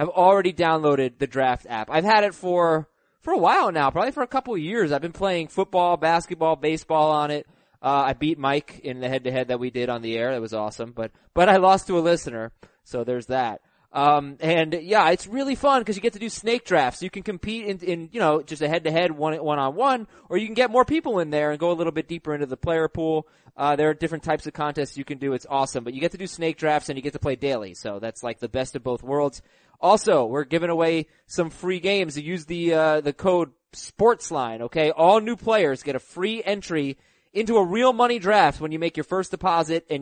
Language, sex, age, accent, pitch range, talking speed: English, male, 20-39, American, 145-200 Hz, 255 wpm